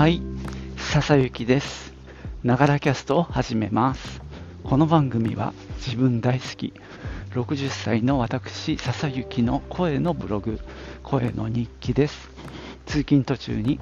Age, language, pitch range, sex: 50-69, Japanese, 100-135 Hz, male